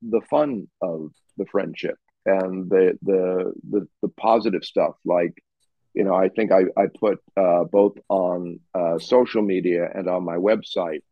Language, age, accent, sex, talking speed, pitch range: English, 50-69, American, male, 160 wpm, 85-110 Hz